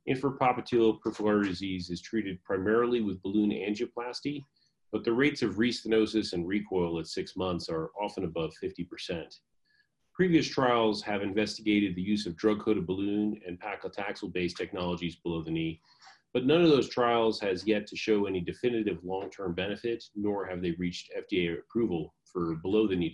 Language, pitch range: English, 95-125 Hz